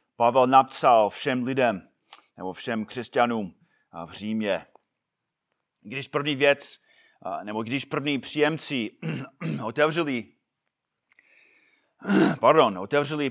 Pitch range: 145-200 Hz